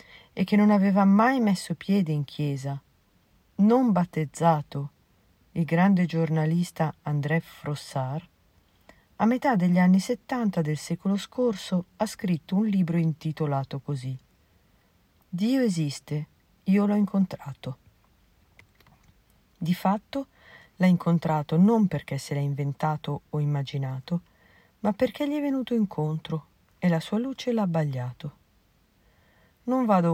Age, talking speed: 50-69, 120 wpm